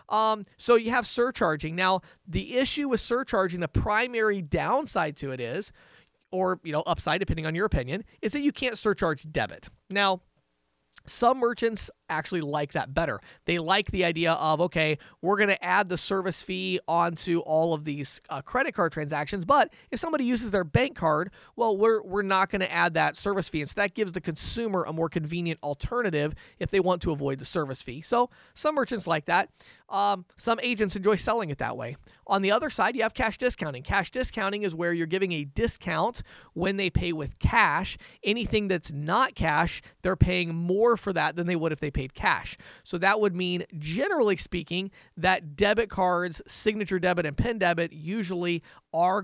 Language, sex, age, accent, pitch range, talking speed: English, male, 30-49, American, 160-210 Hz, 200 wpm